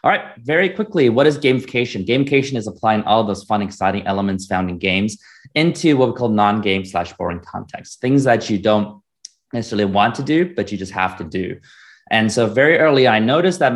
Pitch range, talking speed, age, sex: 95-120 Hz, 205 wpm, 30-49, male